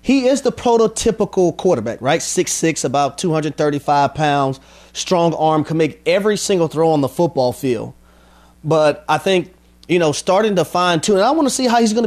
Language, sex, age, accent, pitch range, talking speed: English, male, 30-49, American, 140-185 Hz, 185 wpm